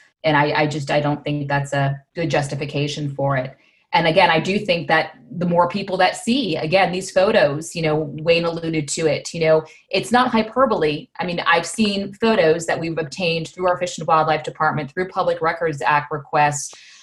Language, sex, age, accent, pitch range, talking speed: English, female, 30-49, American, 155-185 Hz, 200 wpm